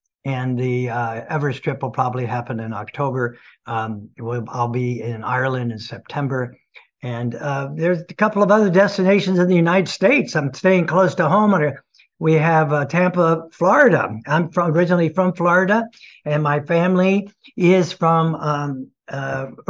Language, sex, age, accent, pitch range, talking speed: English, male, 60-79, American, 135-185 Hz, 160 wpm